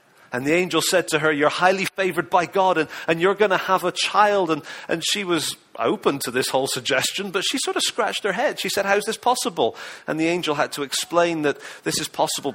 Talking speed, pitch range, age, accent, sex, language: 245 wpm, 150-185 Hz, 40-59, British, male, English